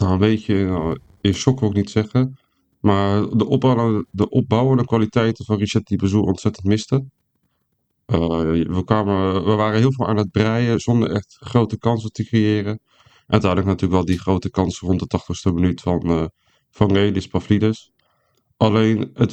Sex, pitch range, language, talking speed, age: male, 90-110 Hz, Dutch, 160 wpm, 40-59